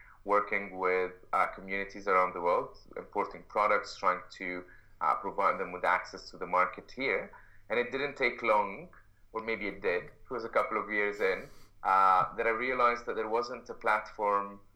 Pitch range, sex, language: 95-110 Hz, male, English